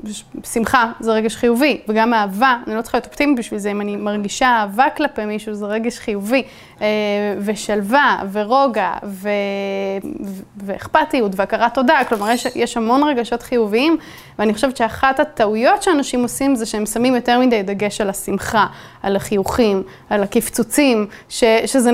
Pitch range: 220-260 Hz